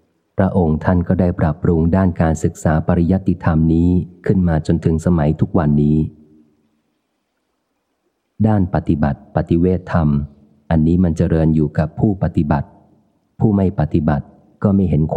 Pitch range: 75-90 Hz